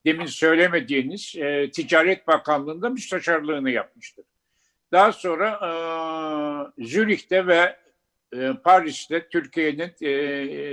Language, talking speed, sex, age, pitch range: Turkish, 90 wpm, male, 60-79, 140-185 Hz